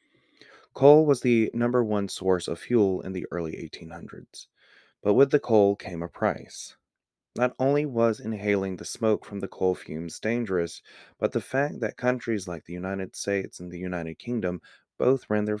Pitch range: 90-115 Hz